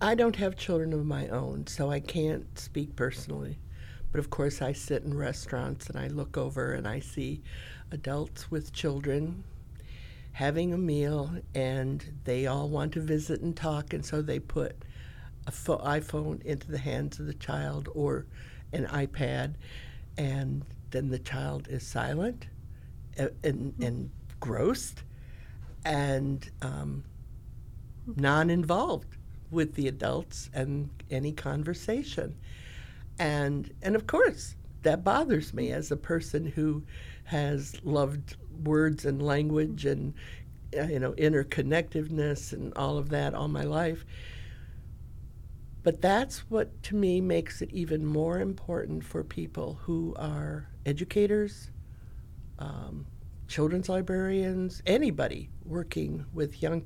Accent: American